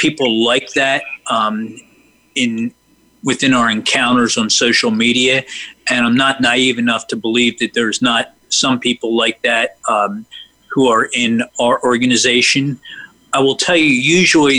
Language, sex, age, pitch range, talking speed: English, male, 40-59, 115-135 Hz, 150 wpm